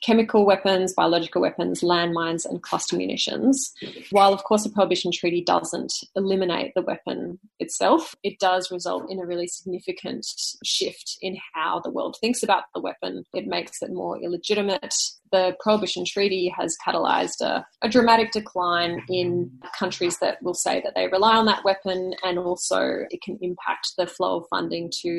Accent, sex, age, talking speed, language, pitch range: Australian, female, 20-39, 165 wpm, English, 180-215 Hz